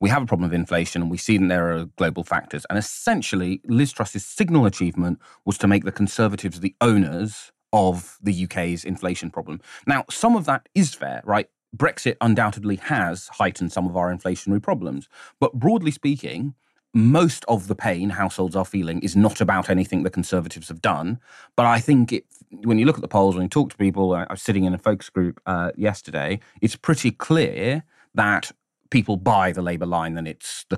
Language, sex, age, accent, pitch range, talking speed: English, male, 30-49, British, 90-120 Hz, 195 wpm